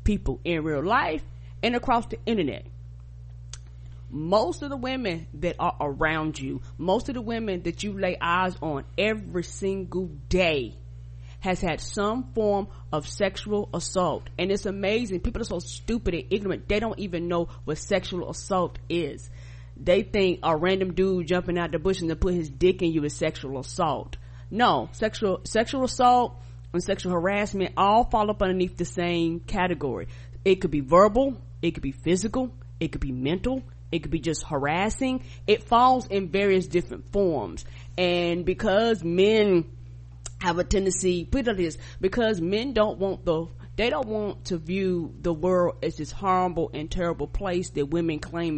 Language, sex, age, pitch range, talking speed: English, female, 30-49, 145-195 Hz, 170 wpm